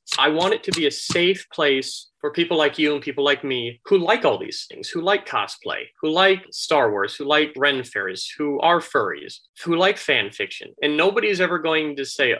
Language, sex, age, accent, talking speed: English, male, 30-49, American, 215 wpm